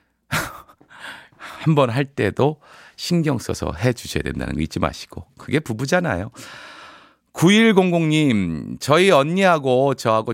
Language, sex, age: Korean, male, 40-59